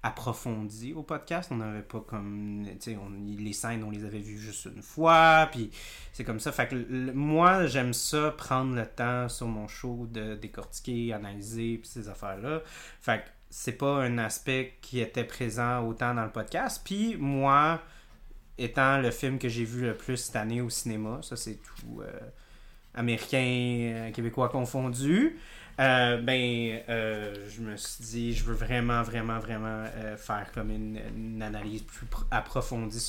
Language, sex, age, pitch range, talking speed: French, male, 30-49, 110-140 Hz, 170 wpm